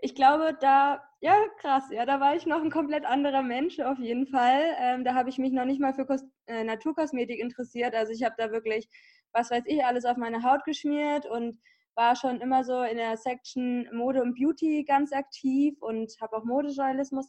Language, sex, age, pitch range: English, female, 20-39, 240-285 Hz